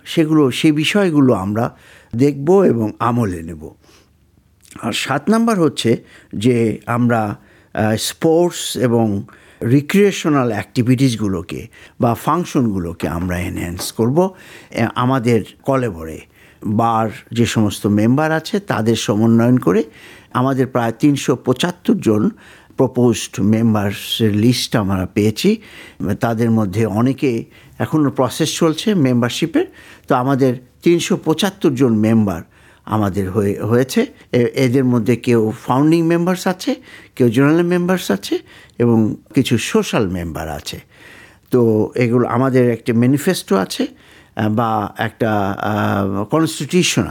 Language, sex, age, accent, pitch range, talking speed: Bengali, male, 60-79, native, 105-145 Hz, 105 wpm